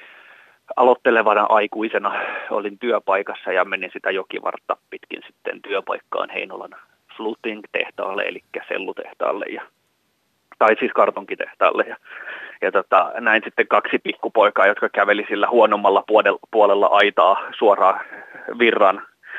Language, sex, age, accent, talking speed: Finnish, male, 30-49, native, 105 wpm